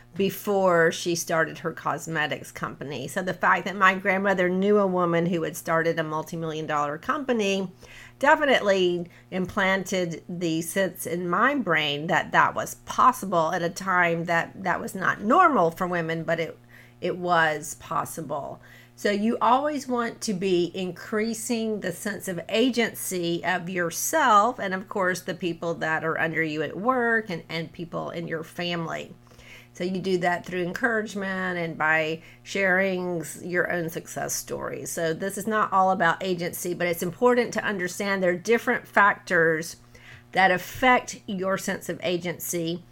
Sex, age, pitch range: female, 40-59, 165-200 Hz